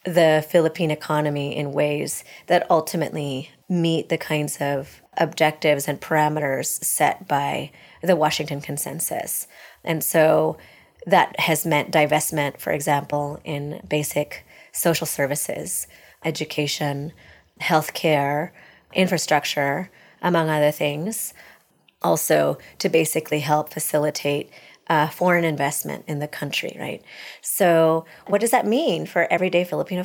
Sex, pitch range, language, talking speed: female, 150-180 Hz, English, 115 wpm